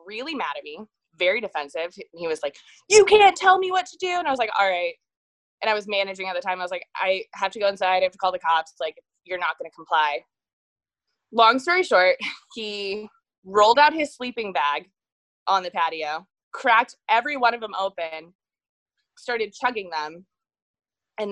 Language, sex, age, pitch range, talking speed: English, female, 20-39, 195-290 Hz, 205 wpm